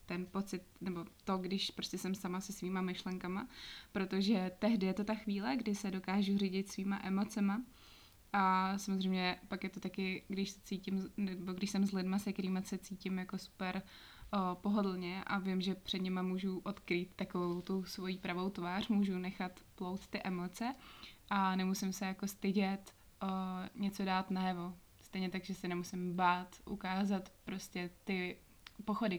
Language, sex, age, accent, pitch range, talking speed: Czech, female, 20-39, native, 185-200 Hz, 170 wpm